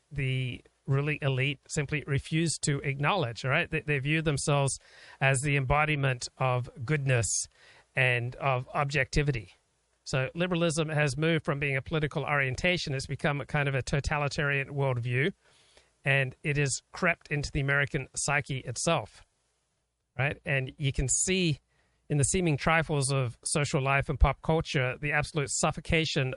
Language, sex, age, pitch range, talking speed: English, male, 40-59, 135-155 Hz, 145 wpm